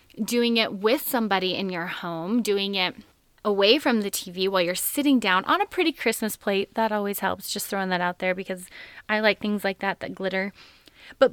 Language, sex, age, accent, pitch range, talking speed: English, female, 20-39, American, 185-230 Hz, 205 wpm